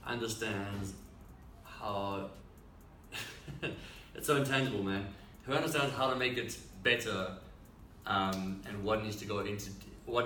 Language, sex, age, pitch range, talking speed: English, male, 30-49, 90-110 Hz, 125 wpm